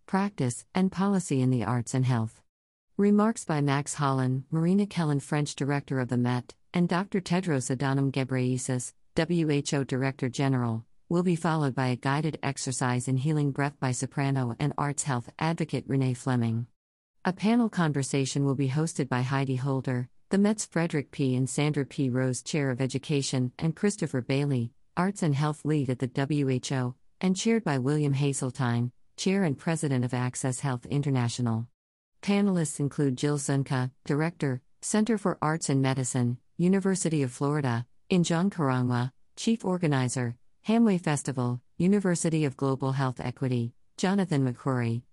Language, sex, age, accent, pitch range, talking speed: English, female, 50-69, American, 125-160 Hz, 150 wpm